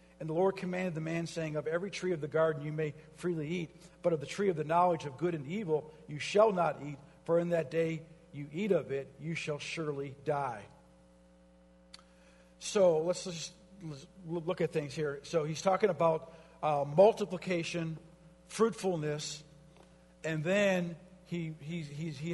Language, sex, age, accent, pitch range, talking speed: English, male, 50-69, American, 145-180 Hz, 170 wpm